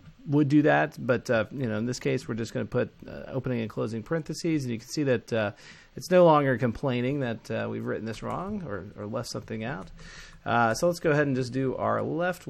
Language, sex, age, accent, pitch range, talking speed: English, male, 30-49, American, 120-160 Hz, 260 wpm